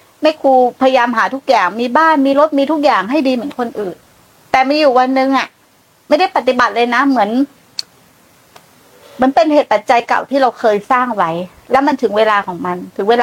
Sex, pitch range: female, 230-285 Hz